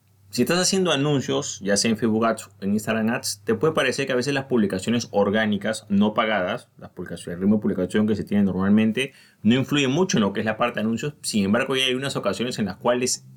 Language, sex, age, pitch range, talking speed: Spanish, male, 30-49, 105-140 Hz, 245 wpm